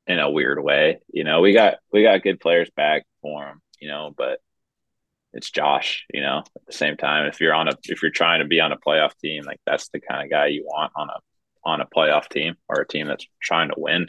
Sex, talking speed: male, 255 wpm